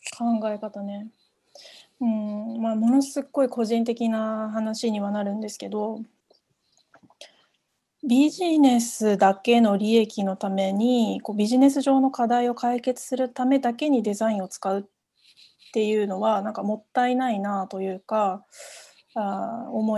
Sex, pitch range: female, 205-245 Hz